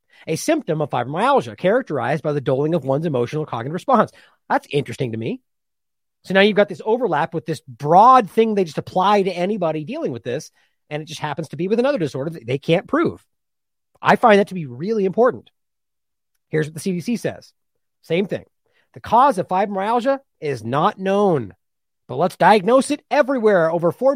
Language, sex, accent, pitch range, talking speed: English, male, American, 155-235 Hz, 190 wpm